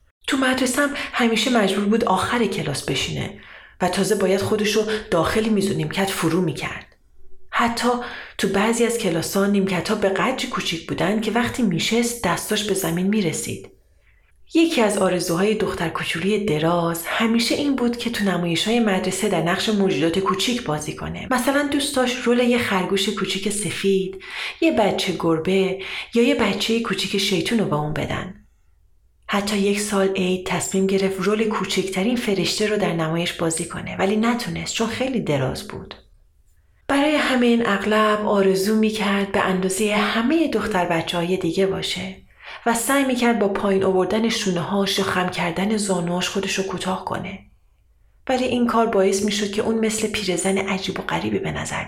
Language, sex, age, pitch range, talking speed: Persian, female, 30-49, 180-220 Hz, 155 wpm